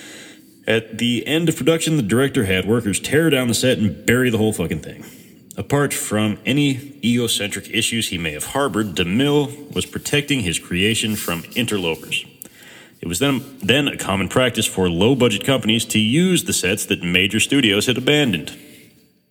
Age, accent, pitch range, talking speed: 30-49, American, 95-120 Hz, 165 wpm